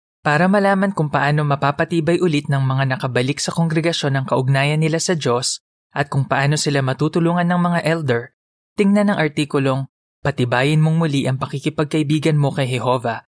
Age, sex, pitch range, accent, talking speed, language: 20-39, male, 125-160 Hz, native, 160 wpm, Filipino